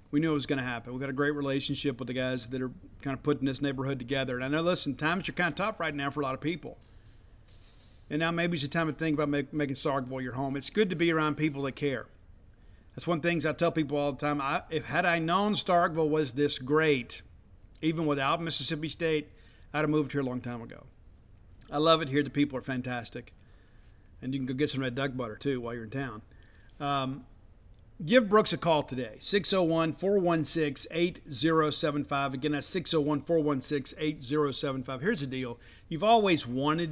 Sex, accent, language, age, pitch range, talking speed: male, American, English, 50-69, 125-160 Hz, 215 wpm